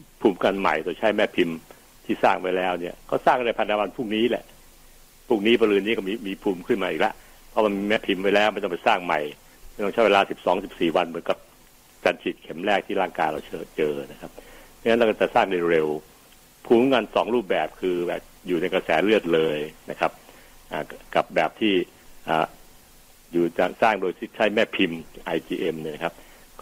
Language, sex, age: Thai, male, 60-79